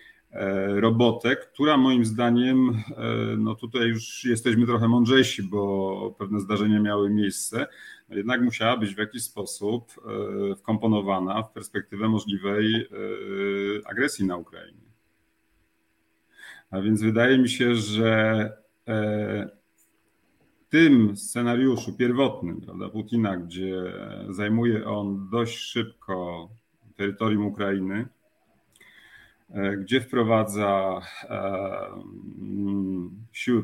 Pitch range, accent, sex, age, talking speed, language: 100-115 Hz, native, male, 40-59, 90 wpm, Polish